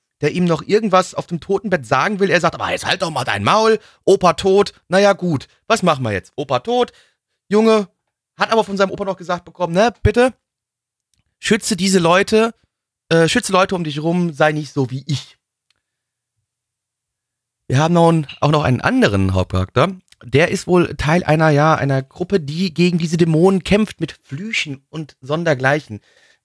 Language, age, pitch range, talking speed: German, 30-49, 125-180 Hz, 175 wpm